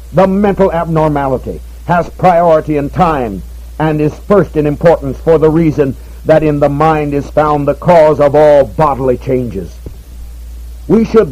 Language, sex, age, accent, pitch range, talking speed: English, male, 60-79, American, 145-175 Hz, 155 wpm